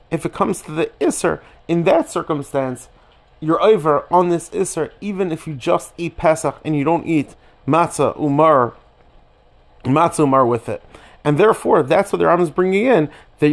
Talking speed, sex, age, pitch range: 175 wpm, male, 30-49, 140-170 Hz